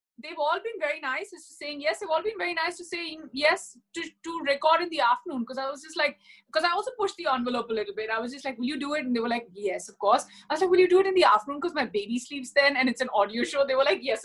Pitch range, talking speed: 235-330 Hz, 315 wpm